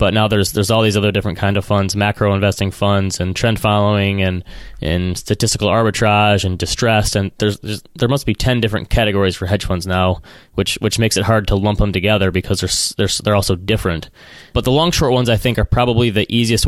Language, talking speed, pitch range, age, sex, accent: English, 220 wpm, 95-115 Hz, 20-39, male, American